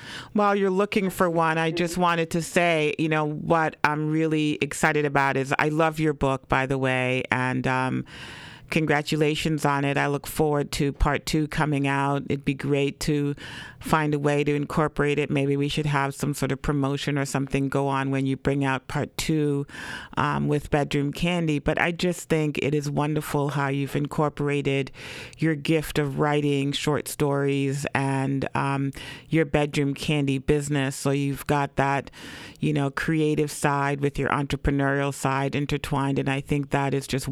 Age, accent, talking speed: 40-59, American, 180 wpm